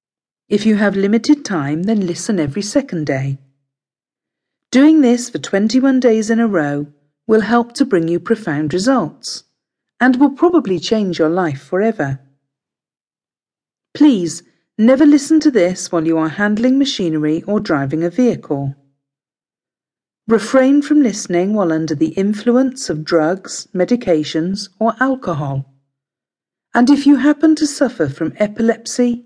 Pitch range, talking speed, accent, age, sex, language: 155-240 Hz, 135 wpm, British, 50-69, female, English